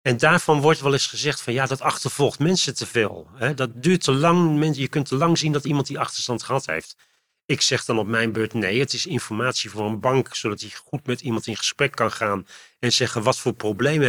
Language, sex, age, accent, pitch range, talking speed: Dutch, male, 40-59, Dutch, 120-150 Hz, 235 wpm